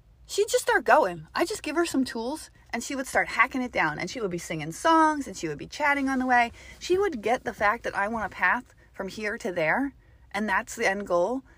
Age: 30-49